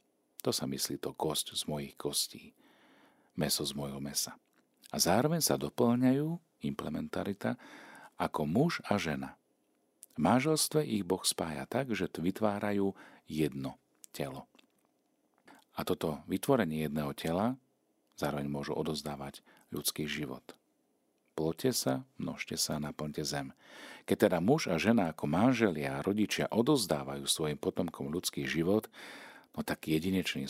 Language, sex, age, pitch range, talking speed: Slovak, male, 40-59, 75-95 Hz, 125 wpm